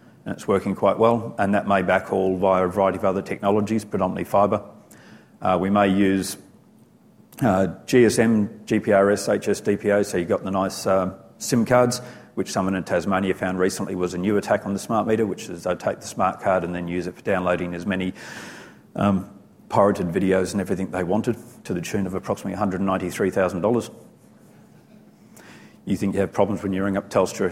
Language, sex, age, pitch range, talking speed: English, male, 40-59, 95-105 Hz, 185 wpm